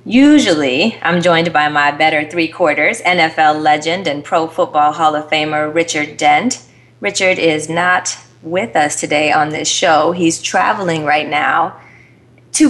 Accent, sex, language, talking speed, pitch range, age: American, female, English, 145 wpm, 155-180 Hz, 30-49